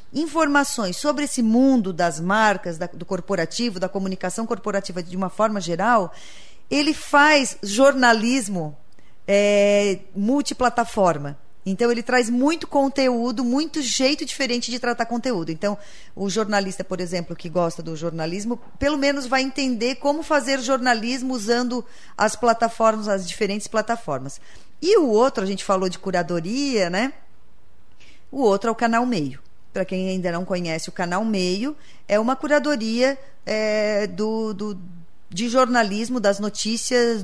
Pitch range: 195-255 Hz